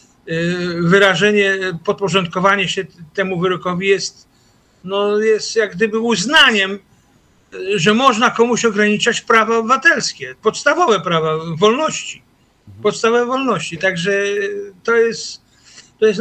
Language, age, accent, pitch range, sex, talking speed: Polish, 50-69, native, 170-205 Hz, male, 105 wpm